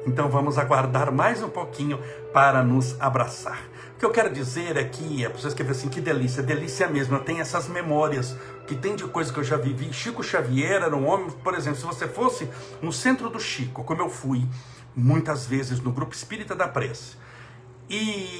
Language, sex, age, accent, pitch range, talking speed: Portuguese, male, 60-79, Brazilian, 130-200 Hz, 200 wpm